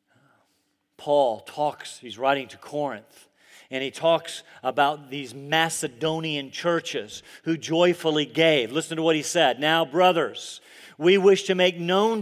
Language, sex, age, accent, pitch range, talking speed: English, male, 40-59, American, 160-215 Hz, 135 wpm